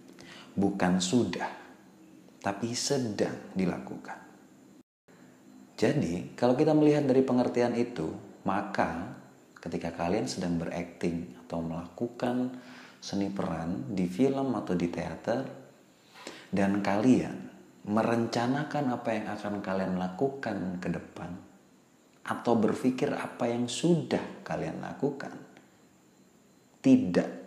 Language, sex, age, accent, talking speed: Indonesian, male, 30-49, native, 95 wpm